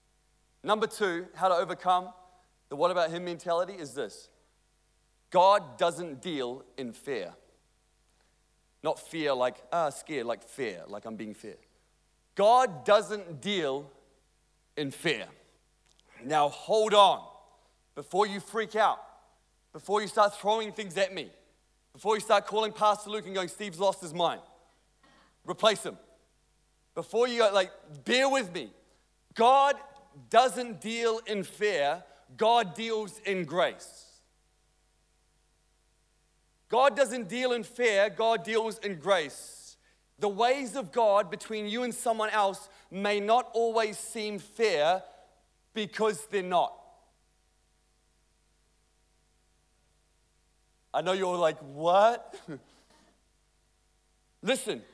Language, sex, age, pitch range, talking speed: English, male, 30-49, 145-220 Hz, 120 wpm